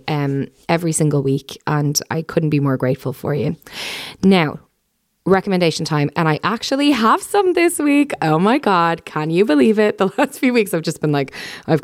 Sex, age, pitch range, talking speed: female, 20-39, 145-180 Hz, 195 wpm